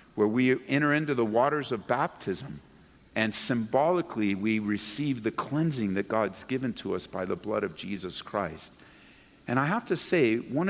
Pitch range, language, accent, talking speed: 110-180 Hz, English, American, 175 wpm